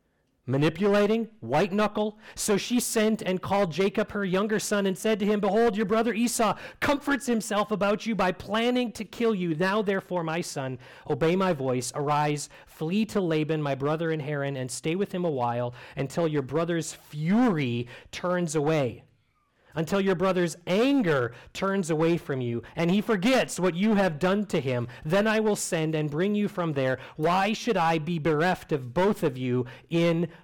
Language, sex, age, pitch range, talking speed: English, male, 40-59, 130-205 Hz, 180 wpm